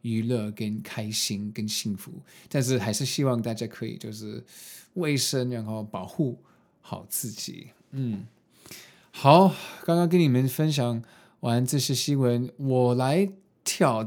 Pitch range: 110-155 Hz